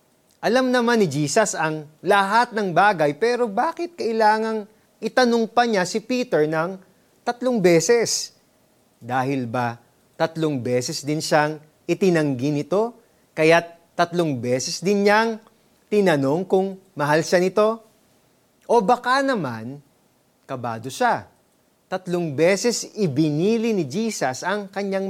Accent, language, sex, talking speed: native, Filipino, male, 115 wpm